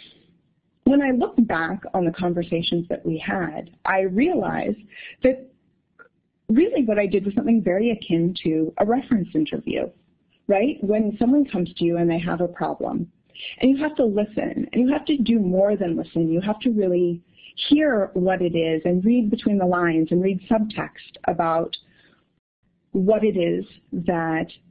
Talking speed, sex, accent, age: 170 wpm, female, American, 30-49